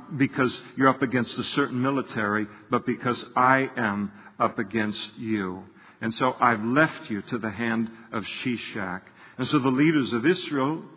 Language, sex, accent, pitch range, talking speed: English, male, American, 115-135 Hz, 165 wpm